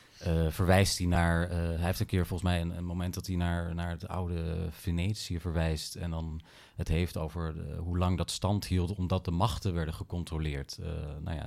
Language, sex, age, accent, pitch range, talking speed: Dutch, male, 40-59, Dutch, 85-100 Hz, 215 wpm